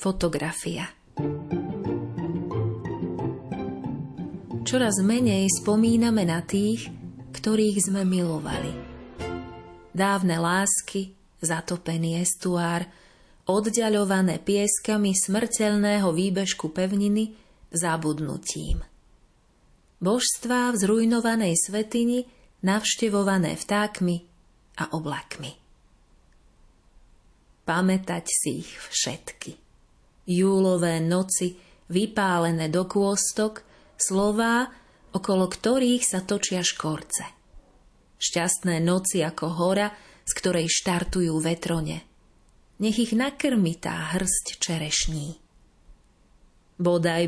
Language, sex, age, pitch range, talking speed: Slovak, female, 30-49, 165-205 Hz, 70 wpm